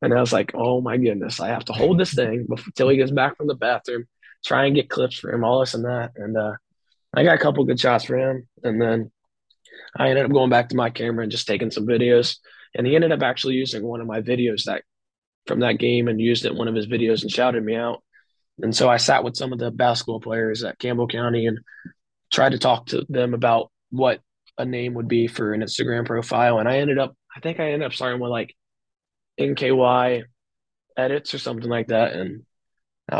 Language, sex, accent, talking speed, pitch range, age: English, male, American, 235 wpm, 115-125 Hz, 20-39